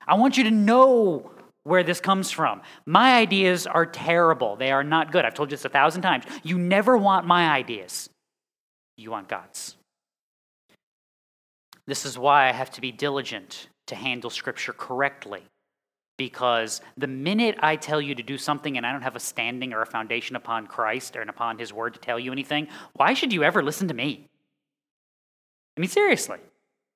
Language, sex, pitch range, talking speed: English, male, 140-220 Hz, 185 wpm